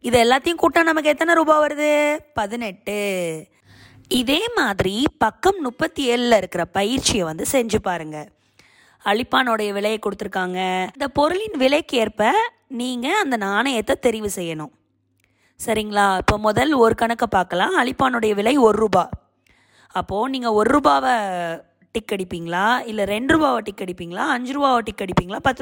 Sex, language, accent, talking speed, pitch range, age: female, Tamil, native, 130 wpm, 195-270 Hz, 20-39